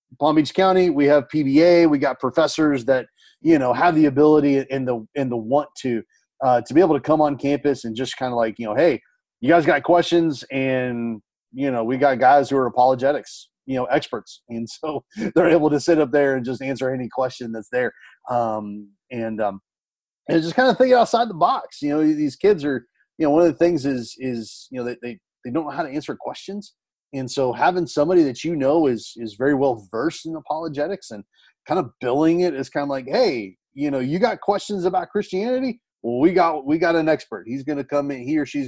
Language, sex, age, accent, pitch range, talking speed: English, male, 30-49, American, 120-165 Hz, 235 wpm